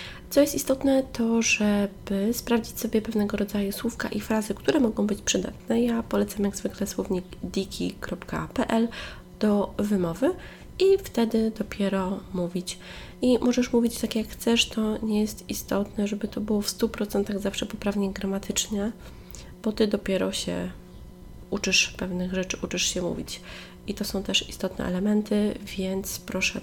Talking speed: 145 wpm